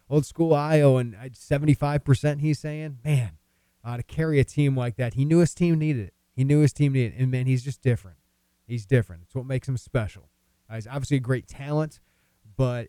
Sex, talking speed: male, 215 wpm